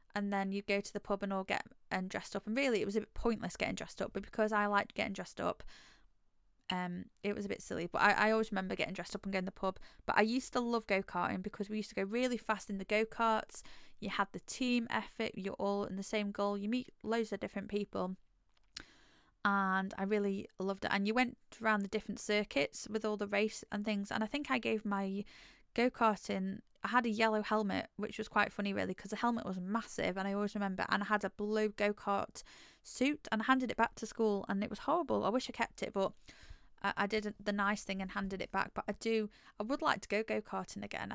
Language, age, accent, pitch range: English, 10-29, British, 195-225 Hz